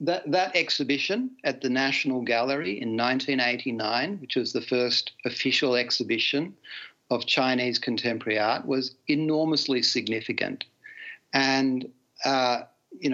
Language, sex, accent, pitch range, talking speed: English, male, Australian, 120-140 Hz, 110 wpm